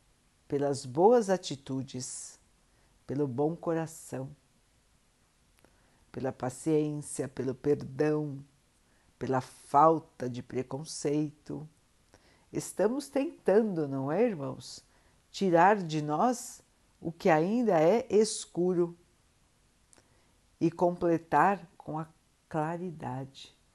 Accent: Brazilian